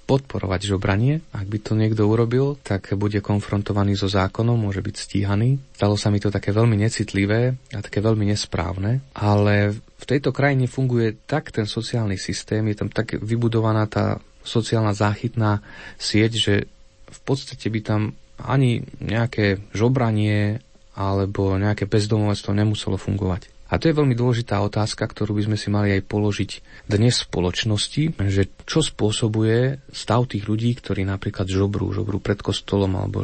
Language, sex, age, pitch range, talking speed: Slovak, male, 30-49, 100-115 Hz, 155 wpm